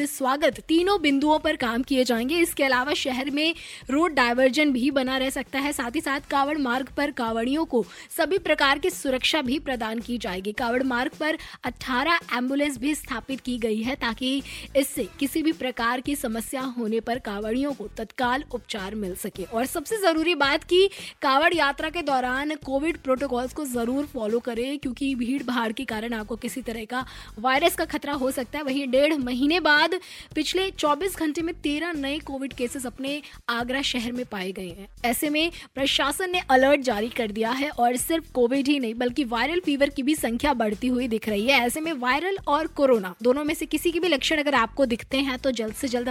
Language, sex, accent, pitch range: Hindi, female, native, 240-300 Hz